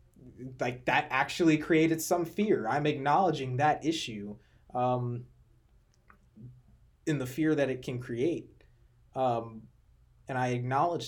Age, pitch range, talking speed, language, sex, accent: 20-39, 115-135 Hz, 120 wpm, English, male, American